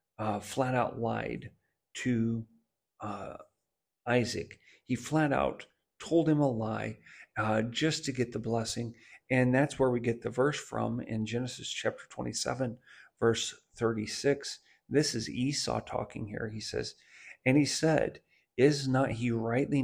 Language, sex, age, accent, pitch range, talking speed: English, male, 50-69, American, 115-135 Hz, 140 wpm